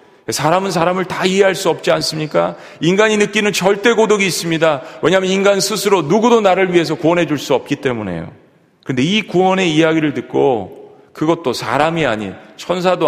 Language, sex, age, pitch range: Korean, male, 40-59, 115-175 Hz